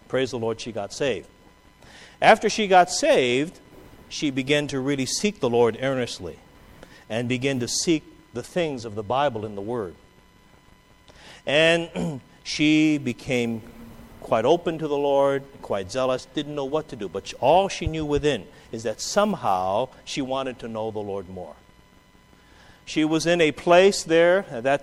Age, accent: 50-69, American